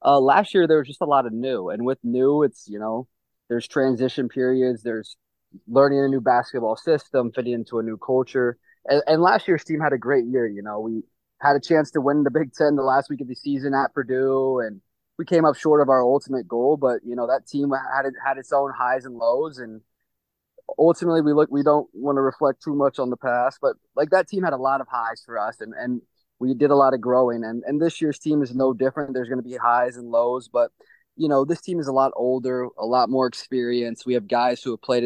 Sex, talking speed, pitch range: male, 250 wpm, 120-140 Hz